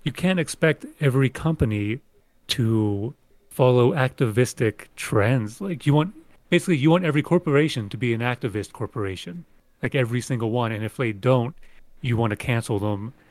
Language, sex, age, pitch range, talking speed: English, male, 30-49, 110-140 Hz, 160 wpm